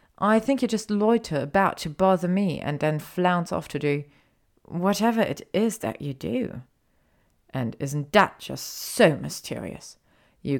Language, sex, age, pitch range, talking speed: German, female, 30-49, 145-190 Hz, 160 wpm